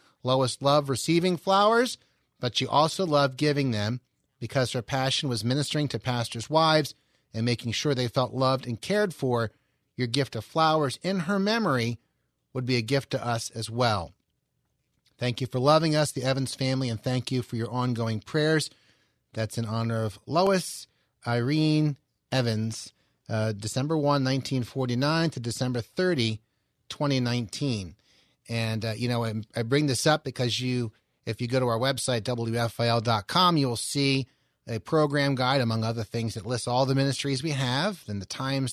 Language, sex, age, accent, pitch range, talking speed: English, male, 30-49, American, 115-140 Hz, 170 wpm